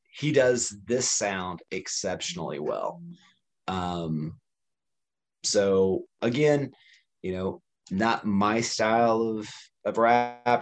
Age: 30-49